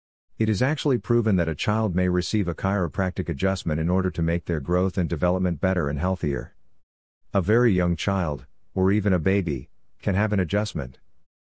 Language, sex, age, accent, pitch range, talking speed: English, male, 50-69, American, 85-100 Hz, 185 wpm